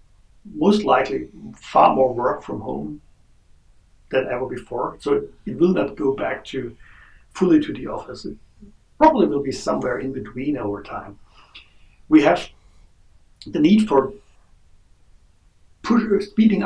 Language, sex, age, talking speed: English, male, 60-79, 130 wpm